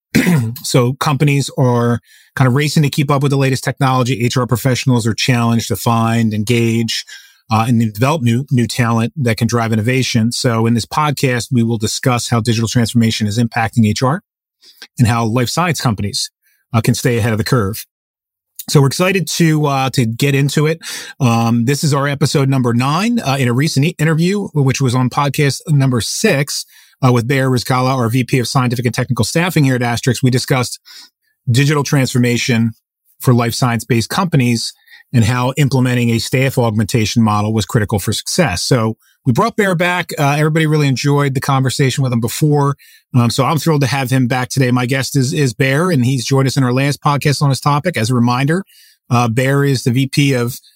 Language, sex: English, male